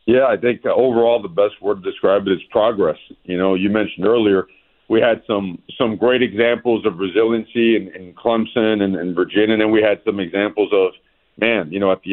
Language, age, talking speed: English, 50-69, 220 wpm